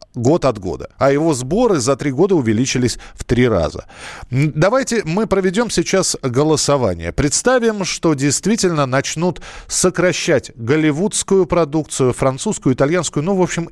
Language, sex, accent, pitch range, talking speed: Russian, male, native, 115-175 Hz, 130 wpm